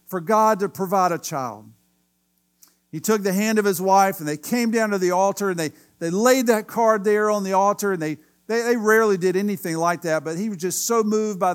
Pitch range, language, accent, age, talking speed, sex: 170-225 Hz, English, American, 50-69, 240 wpm, male